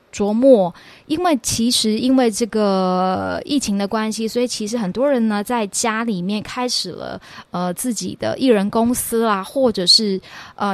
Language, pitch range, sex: Chinese, 195-250 Hz, female